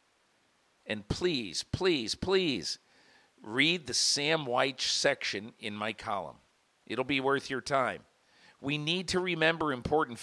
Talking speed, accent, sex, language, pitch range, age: 130 wpm, American, male, English, 110-145 Hz, 50-69